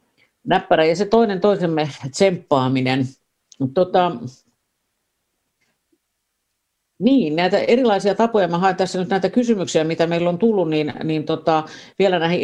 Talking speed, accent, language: 125 wpm, native, Finnish